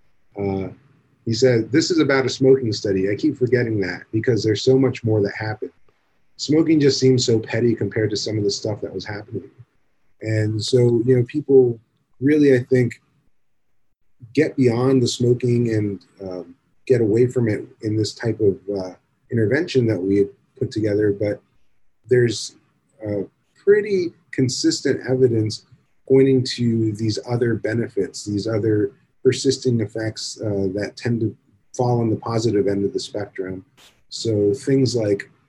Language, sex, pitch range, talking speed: English, male, 105-130 Hz, 155 wpm